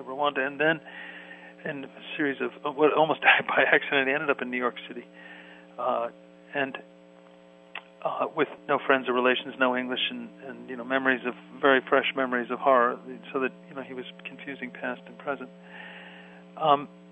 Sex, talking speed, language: male, 180 wpm, English